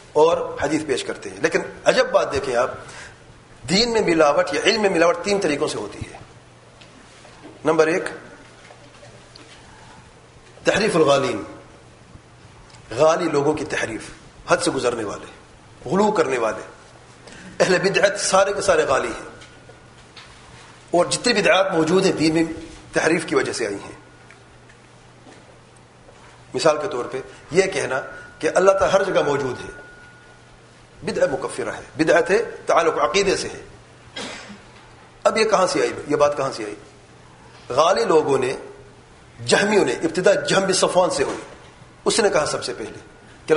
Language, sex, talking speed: Urdu, male, 145 wpm